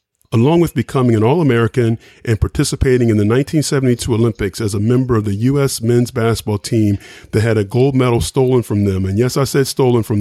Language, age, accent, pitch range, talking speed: English, 40-59, American, 110-135 Hz, 200 wpm